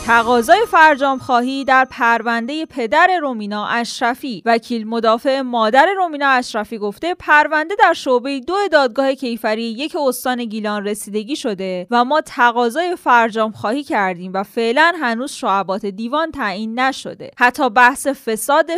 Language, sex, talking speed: Persian, female, 130 wpm